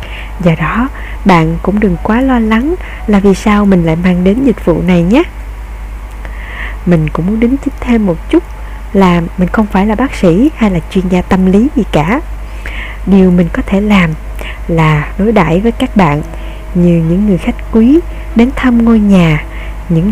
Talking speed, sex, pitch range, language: 190 wpm, female, 170-220 Hz, Vietnamese